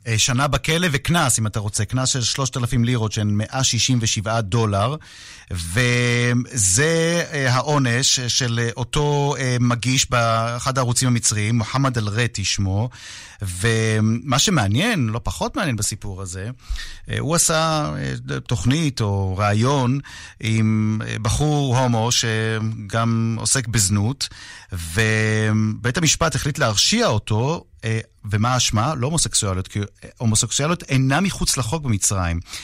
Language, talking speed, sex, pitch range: Hebrew, 105 wpm, male, 105-130 Hz